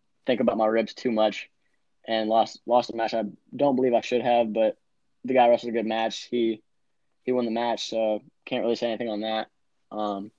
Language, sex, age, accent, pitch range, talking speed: English, male, 10-29, American, 110-120 Hz, 215 wpm